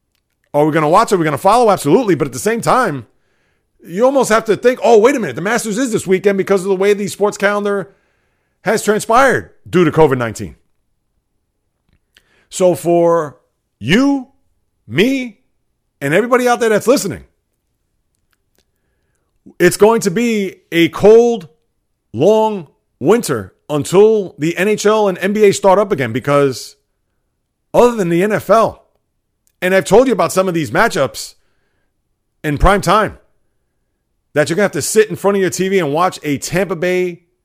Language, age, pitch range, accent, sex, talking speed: English, 40-59, 125-200 Hz, American, male, 160 wpm